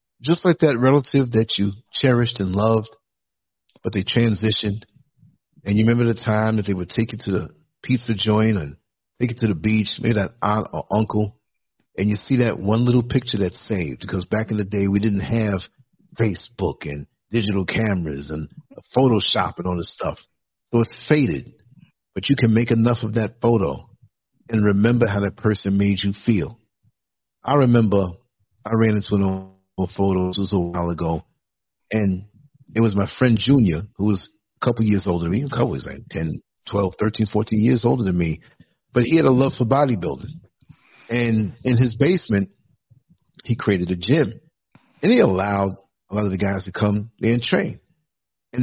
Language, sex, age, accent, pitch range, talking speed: English, male, 60-79, American, 100-120 Hz, 180 wpm